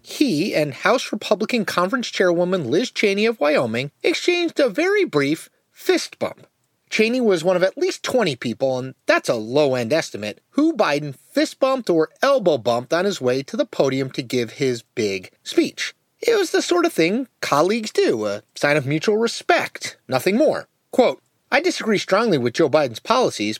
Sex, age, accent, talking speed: male, 30-49, American, 180 wpm